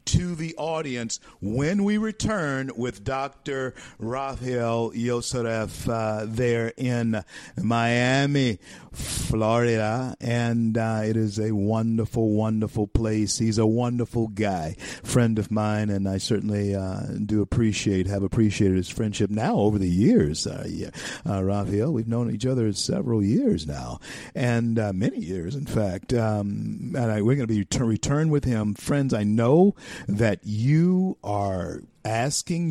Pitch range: 105-135 Hz